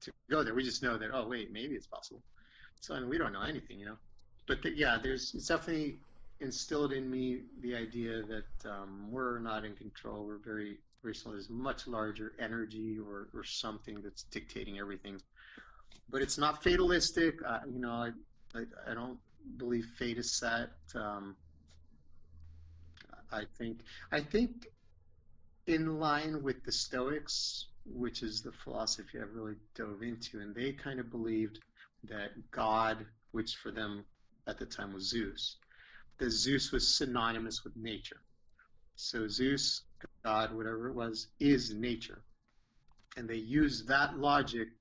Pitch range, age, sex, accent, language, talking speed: 110-130 Hz, 30-49, male, American, English, 160 wpm